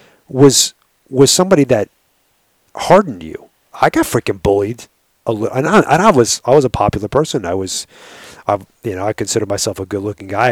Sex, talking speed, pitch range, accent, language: male, 190 wpm, 100-125 Hz, American, English